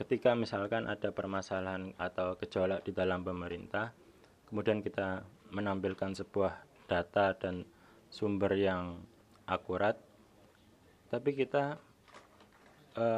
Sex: male